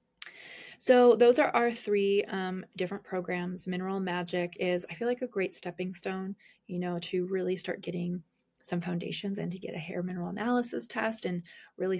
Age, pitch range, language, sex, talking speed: 30-49, 180-215 Hz, English, female, 180 wpm